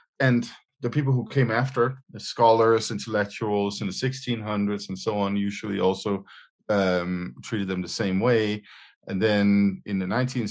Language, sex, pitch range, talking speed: English, male, 90-115 Hz, 160 wpm